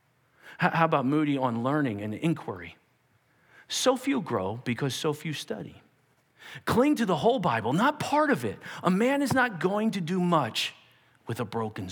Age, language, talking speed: 40-59, English, 170 wpm